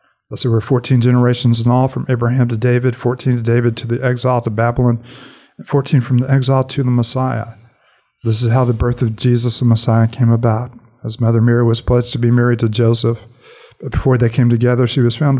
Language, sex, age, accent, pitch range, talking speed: English, male, 40-59, American, 115-125 Hz, 220 wpm